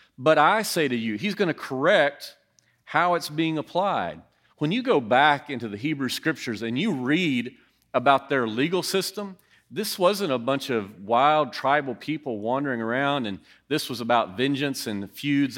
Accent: American